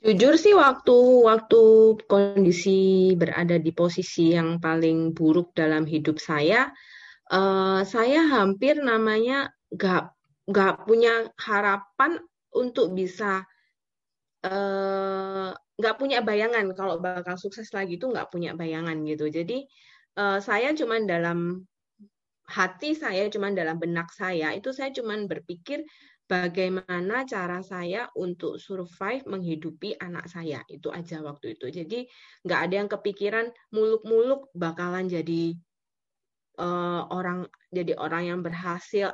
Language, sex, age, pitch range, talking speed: Indonesian, female, 20-39, 175-220 Hz, 120 wpm